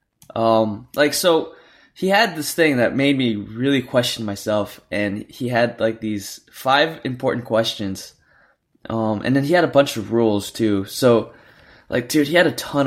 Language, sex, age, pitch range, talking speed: English, male, 20-39, 110-145 Hz, 175 wpm